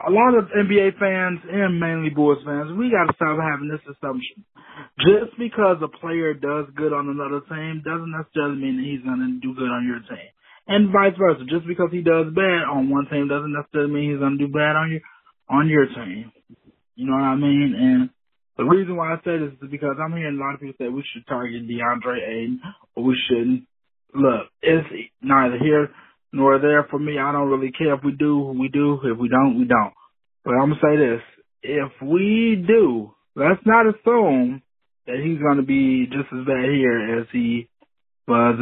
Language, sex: English, male